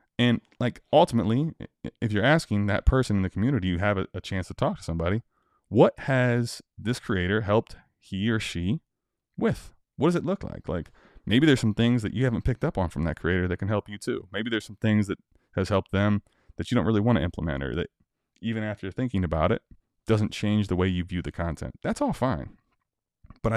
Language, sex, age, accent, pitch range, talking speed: English, male, 20-39, American, 90-120 Hz, 220 wpm